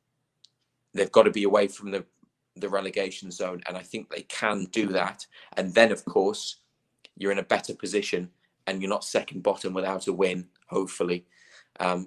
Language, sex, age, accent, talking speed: English, male, 20-39, British, 180 wpm